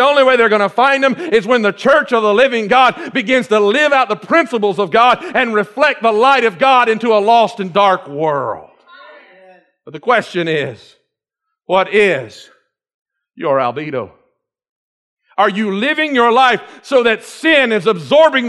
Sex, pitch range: male, 215-300 Hz